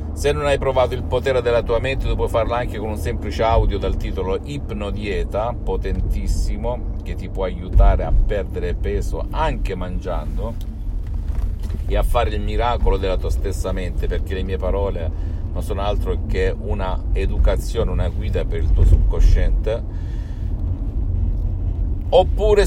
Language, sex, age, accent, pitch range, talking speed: Italian, male, 50-69, native, 85-100 Hz, 150 wpm